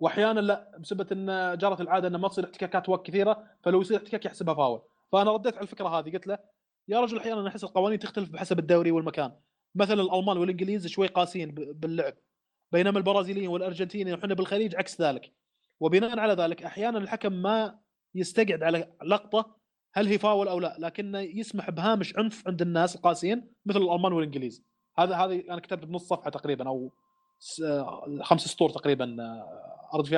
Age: 30-49